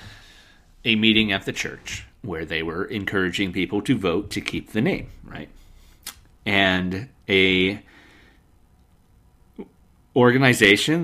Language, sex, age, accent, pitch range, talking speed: English, male, 40-59, American, 95-125 Hz, 110 wpm